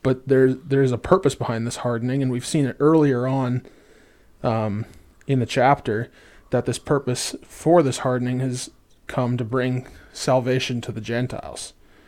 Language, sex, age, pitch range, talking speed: English, male, 20-39, 115-135 Hz, 165 wpm